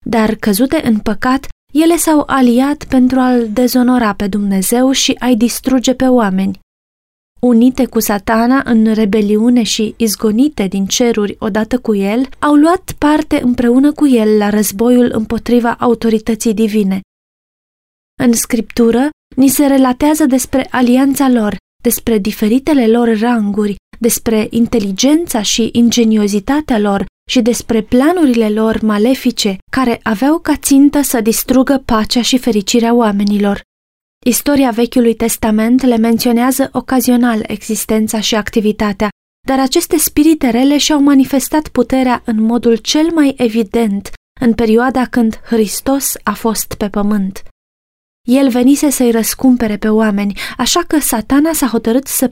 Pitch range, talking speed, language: 220-260 Hz, 130 wpm, Romanian